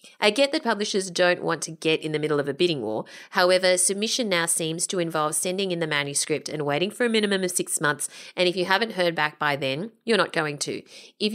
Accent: Australian